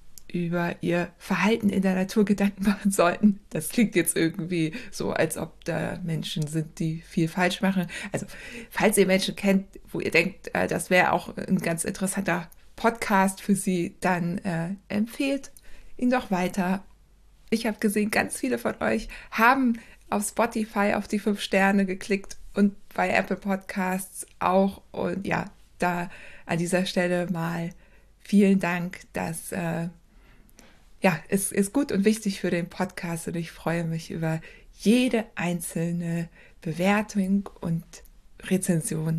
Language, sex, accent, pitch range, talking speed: German, female, German, 175-205 Hz, 150 wpm